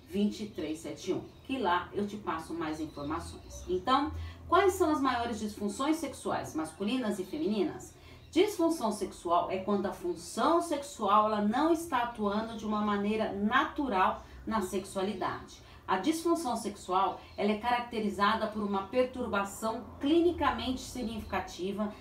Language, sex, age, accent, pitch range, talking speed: Portuguese, female, 40-59, Brazilian, 190-275 Hz, 125 wpm